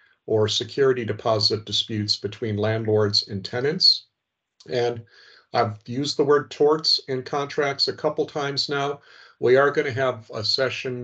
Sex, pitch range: male, 105-125 Hz